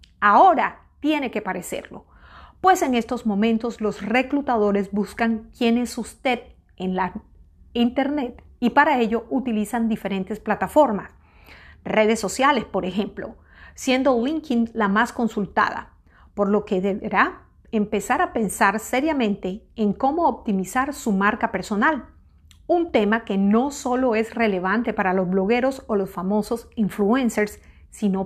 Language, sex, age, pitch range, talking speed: Spanish, female, 40-59, 205-250 Hz, 130 wpm